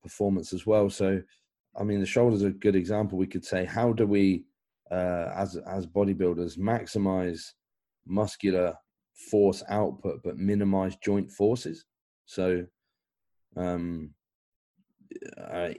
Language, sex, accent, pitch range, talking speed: English, male, British, 85-100 Hz, 125 wpm